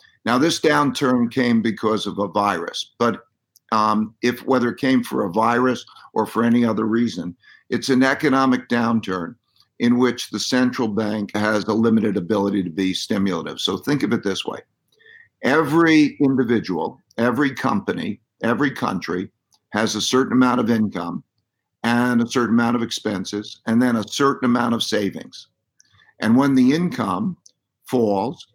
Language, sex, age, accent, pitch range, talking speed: English, male, 50-69, American, 110-130 Hz, 155 wpm